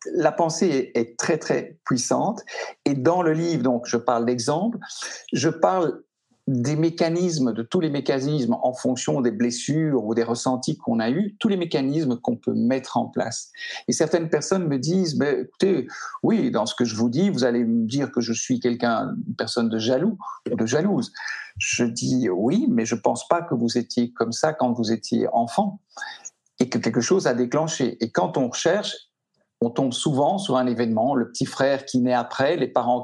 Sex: male